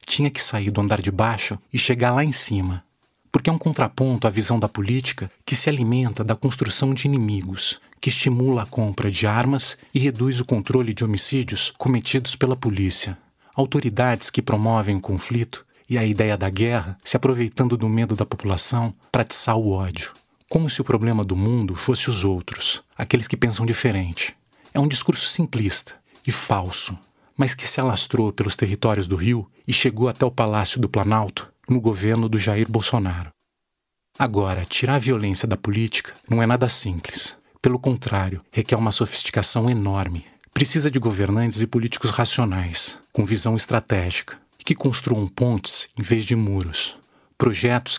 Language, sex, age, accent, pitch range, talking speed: Portuguese, male, 40-59, Brazilian, 105-130 Hz, 165 wpm